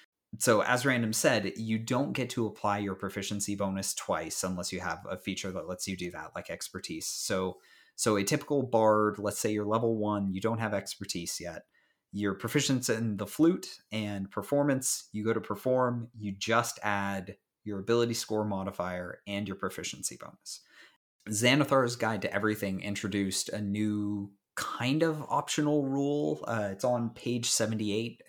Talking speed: 165 wpm